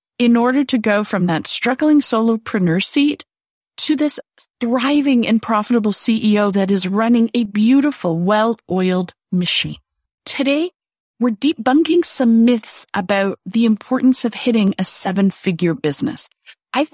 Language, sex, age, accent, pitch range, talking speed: English, female, 40-59, American, 205-265 Hz, 130 wpm